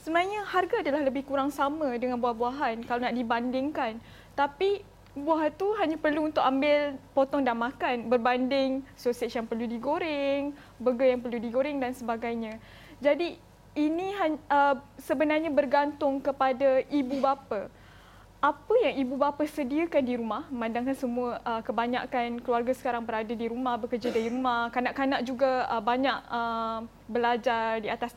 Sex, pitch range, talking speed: female, 245-285 Hz, 145 wpm